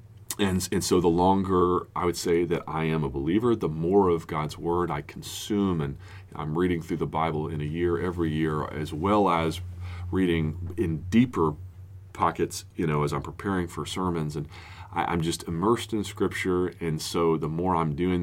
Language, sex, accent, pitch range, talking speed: English, male, American, 80-95 Hz, 190 wpm